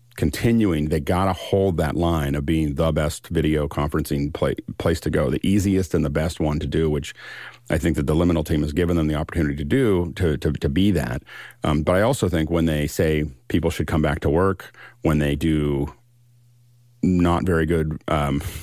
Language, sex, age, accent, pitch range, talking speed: English, male, 50-69, American, 75-90 Hz, 205 wpm